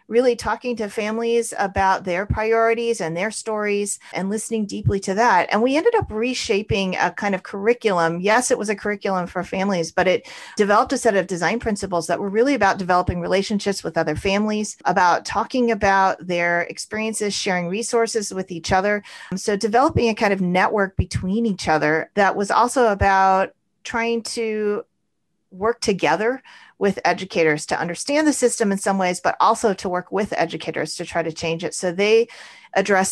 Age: 40-59